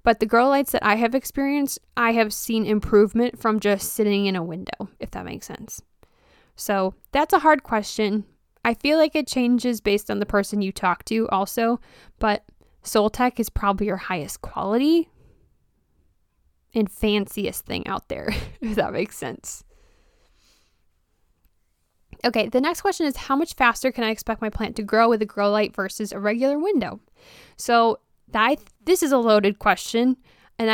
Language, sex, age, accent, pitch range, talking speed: English, female, 10-29, American, 205-250 Hz, 175 wpm